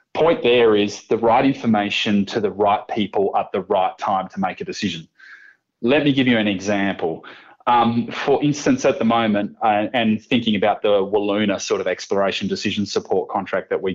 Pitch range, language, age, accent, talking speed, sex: 100-130 Hz, English, 20-39, Australian, 190 wpm, male